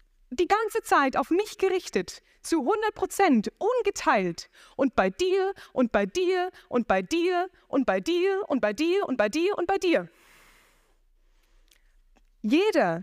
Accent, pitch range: German, 215-350 Hz